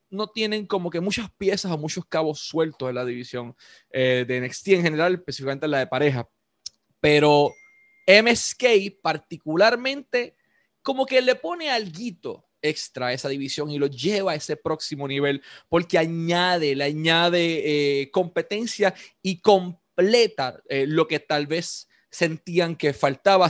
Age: 20-39